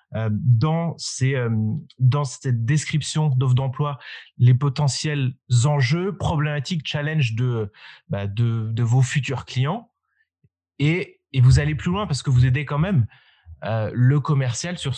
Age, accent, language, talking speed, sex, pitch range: 20-39, French, French, 140 wpm, male, 115-145 Hz